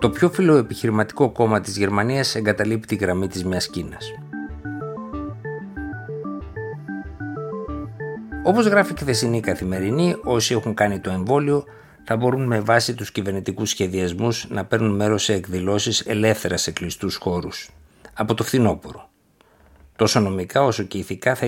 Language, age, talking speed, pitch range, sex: Greek, 60-79, 130 wpm, 90-115 Hz, male